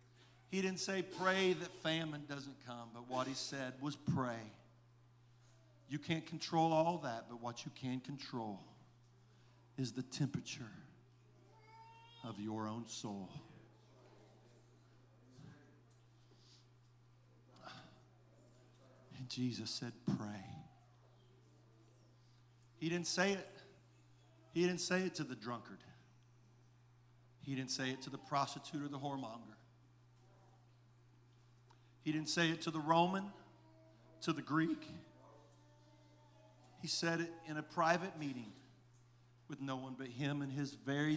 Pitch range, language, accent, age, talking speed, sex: 120-145 Hz, English, American, 50-69, 120 wpm, male